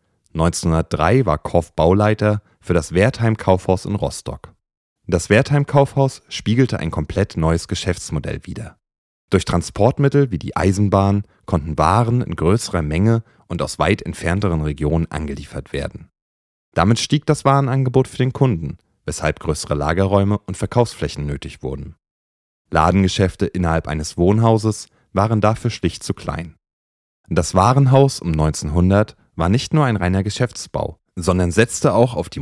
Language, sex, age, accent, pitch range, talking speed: German, male, 30-49, German, 80-110 Hz, 135 wpm